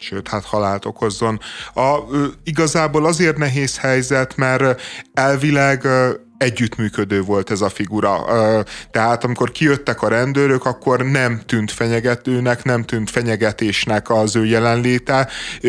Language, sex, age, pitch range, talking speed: Hungarian, male, 30-49, 115-130 Hz, 115 wpm